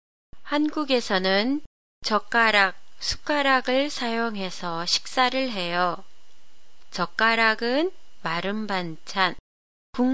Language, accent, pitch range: Japanese, Korean, 190-265 Hz